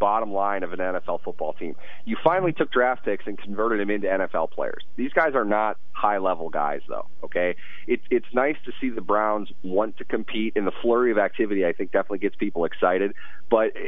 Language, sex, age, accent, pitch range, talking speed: English, male, 30-49, American, 100-125 Hz, 210 wpm